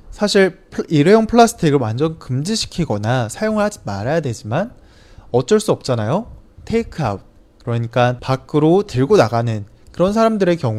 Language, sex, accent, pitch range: Chinese, male, Korean, 110-175 Hz